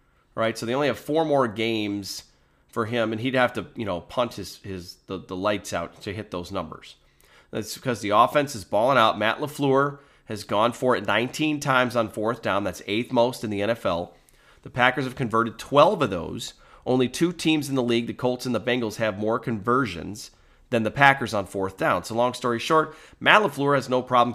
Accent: American